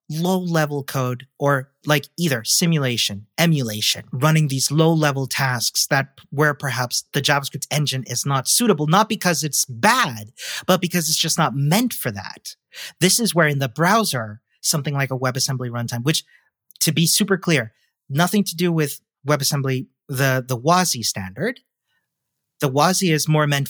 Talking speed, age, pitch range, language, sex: 155 wpm, 30-49, 130-170 Hz, English, male